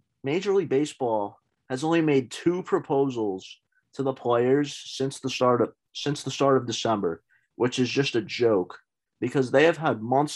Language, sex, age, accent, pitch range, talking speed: English, male, 30-49, American, 105-135 Hz, 175 wpm